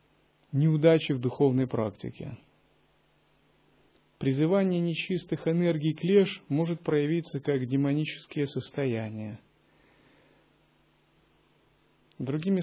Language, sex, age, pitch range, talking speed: Russian, male, 30-49, 130-160 Hz, 65 wpm